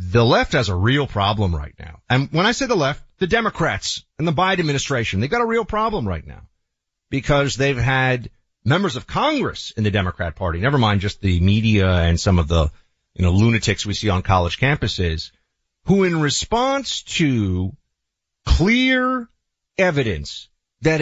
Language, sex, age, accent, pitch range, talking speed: English, male, 40-59, American, 95-150 Hz, 170 wpm